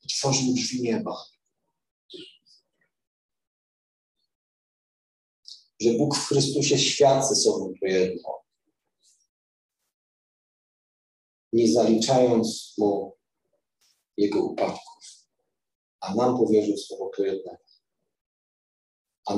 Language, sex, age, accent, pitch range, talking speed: Polish, male, 50-69, native, 105-135 Hz, 75 wpm